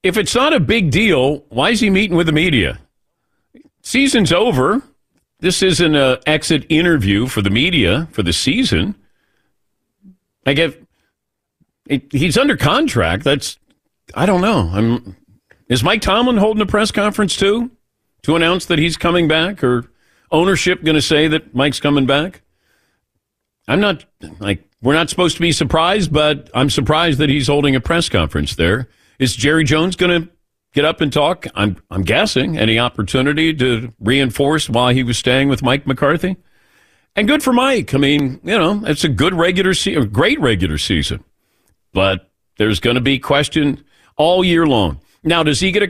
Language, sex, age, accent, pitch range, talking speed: English, male, 50-69, American, 115-165 Hz, 170 wpm